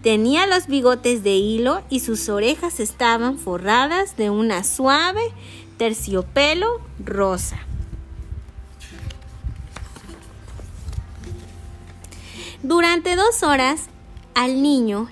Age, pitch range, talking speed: 30-49, 195-295 Hz, 80 wpm